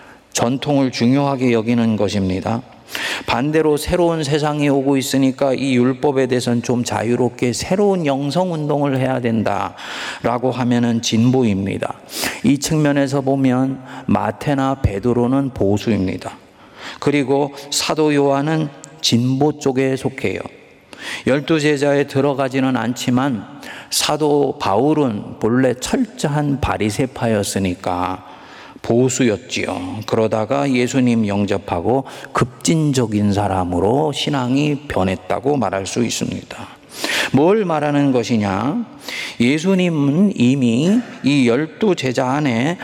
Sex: male